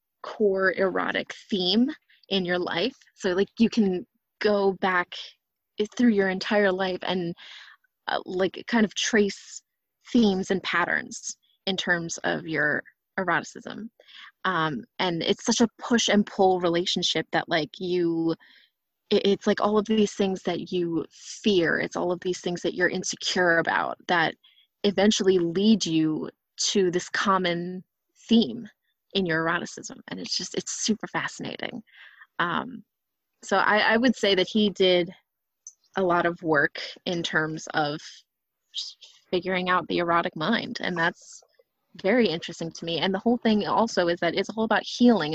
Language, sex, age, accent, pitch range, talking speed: English, female, 20-39, American, 175-210 Hz, 150 wpm